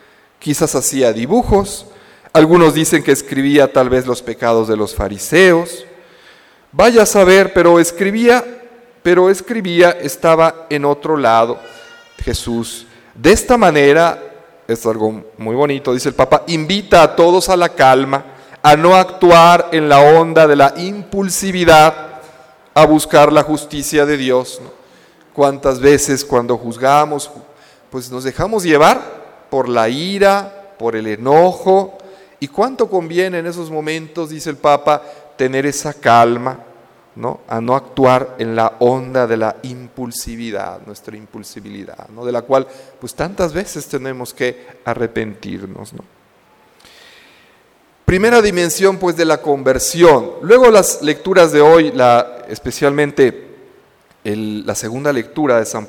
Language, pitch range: Spanish, 125-175 Hz